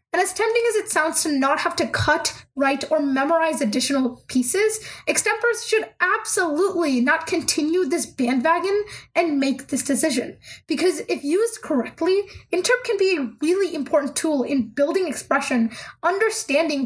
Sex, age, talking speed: female, 20-39, 150 wpm